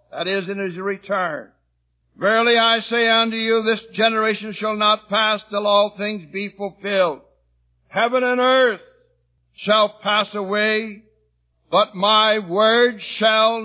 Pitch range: 195-225 Hz